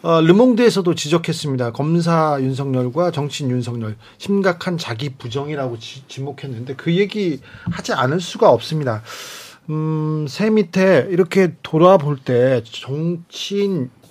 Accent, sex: native, male